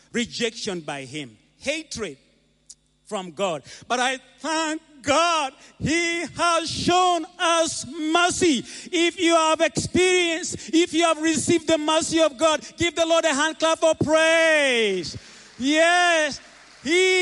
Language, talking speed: English, 130 wpm